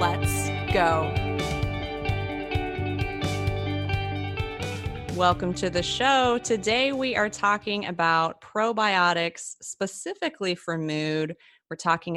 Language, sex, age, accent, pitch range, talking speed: English, female, 30-49, American, 155-195 Hz, 85 wpm